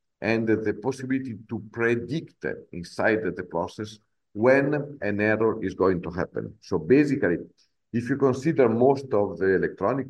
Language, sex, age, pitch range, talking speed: English, male, 50-69, 95-120 Hz, 145 wpm